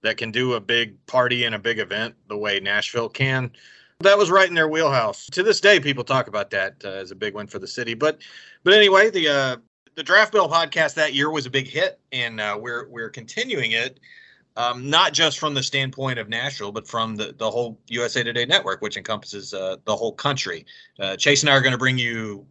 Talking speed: 230 wpm